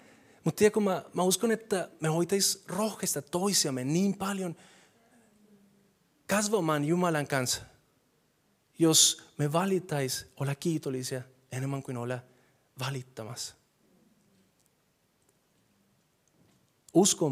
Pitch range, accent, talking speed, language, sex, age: 130-170 Hz, native, 85 wpm, Finnish, male, 30-49